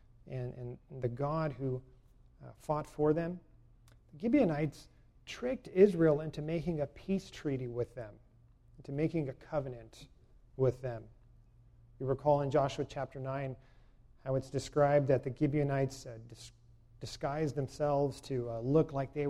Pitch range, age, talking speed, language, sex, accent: 125-155 Hz, 40-59, 145 wpm, English, male, American